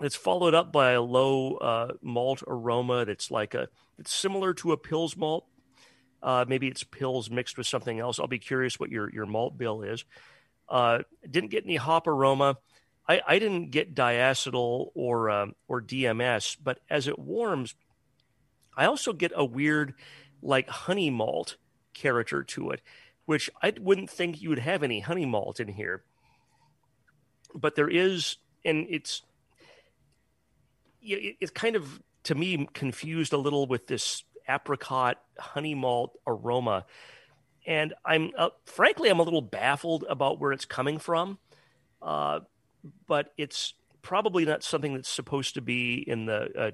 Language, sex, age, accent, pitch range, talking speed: English, male, 40-59, American, 125-155 Hz, 155 wpm